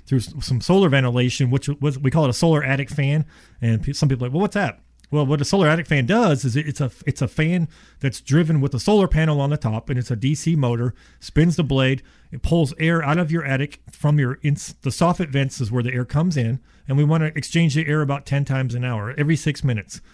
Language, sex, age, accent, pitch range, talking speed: English, male, 40-59, American, 130-155 Hz, 245 wpm